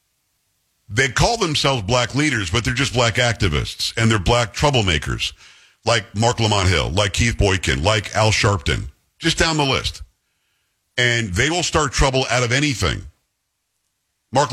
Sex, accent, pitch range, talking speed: male, American, 100-130 Hz, 155 wpm